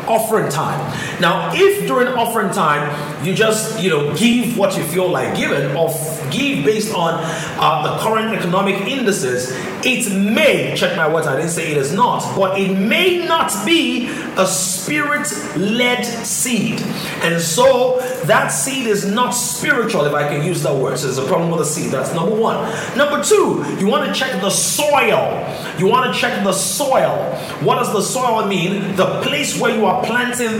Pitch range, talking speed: 170-230 Hz, 185 wpm